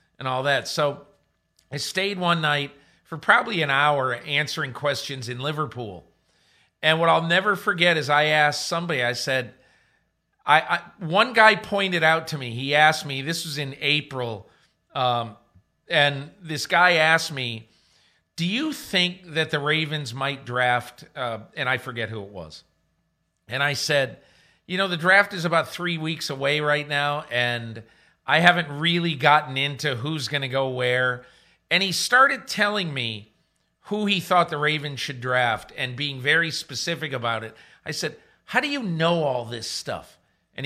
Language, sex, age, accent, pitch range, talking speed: English, male, 50-69, American, 130-175 Hz, 170 wpm